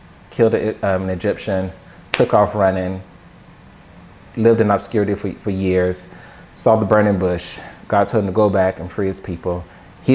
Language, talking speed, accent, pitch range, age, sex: English, 160 wpm, American, 95-110 Hz, 30-49, male